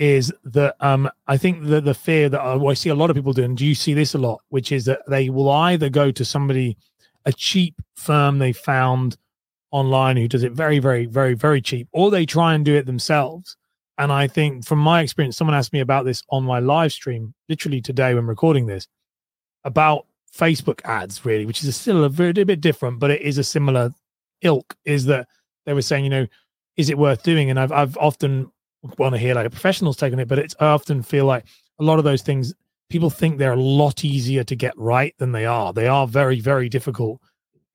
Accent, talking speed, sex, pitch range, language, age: British, 230 wpm, male, 125-150 Hz, English, 30-49